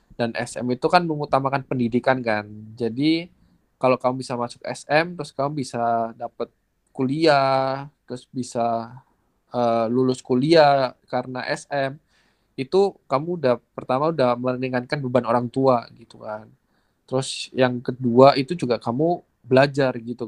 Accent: native